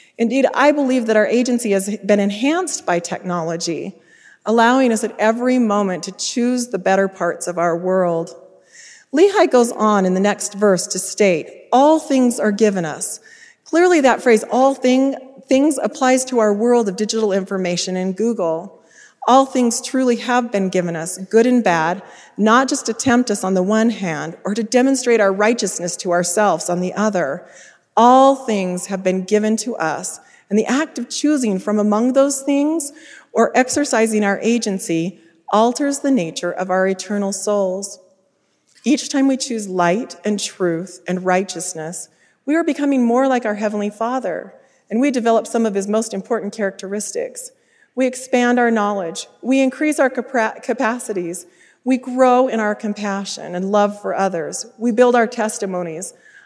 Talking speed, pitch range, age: 165 wpm, 195-255 Hz, 30-49